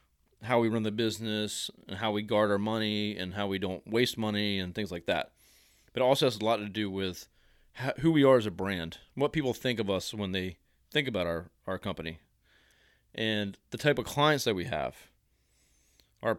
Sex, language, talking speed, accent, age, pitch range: male, English, 210 wpm, American, 30-49, 90-125 Hz